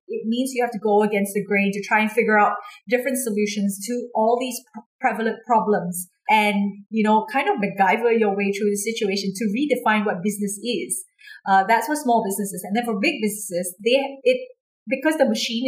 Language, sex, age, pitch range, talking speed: English, female, 30-49, 205-250 Hz, 200 wpm